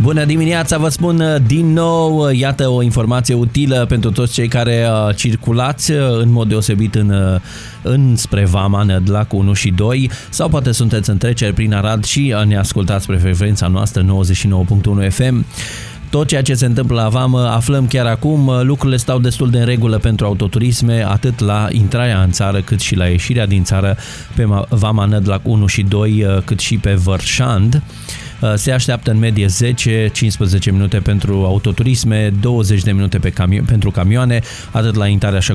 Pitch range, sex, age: 100-120 Hz, male, 20-39